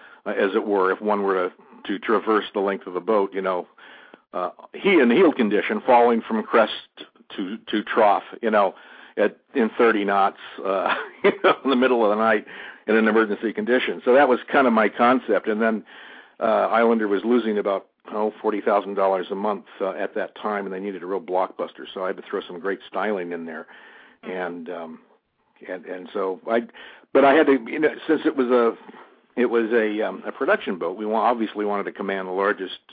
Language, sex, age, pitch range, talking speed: English, male, 50-69, 100-120 Hz, 210 wpm